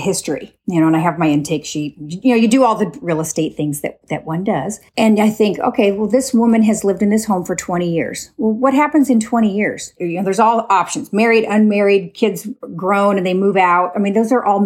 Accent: American